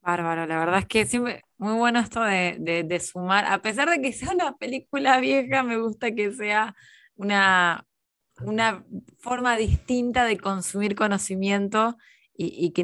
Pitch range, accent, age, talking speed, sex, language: 170-210 Hz, Argentinian, 20-39, 165 wpm, female, Spanish